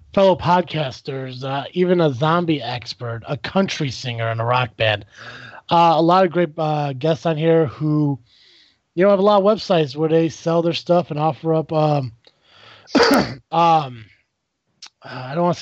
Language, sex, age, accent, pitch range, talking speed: English, male, 20-39, American, 135-170 Hz, 170 wpm